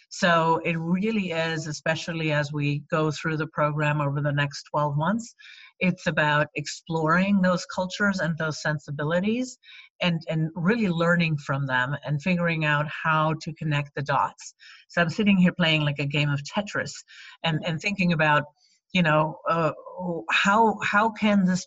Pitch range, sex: 150-180 Hz, female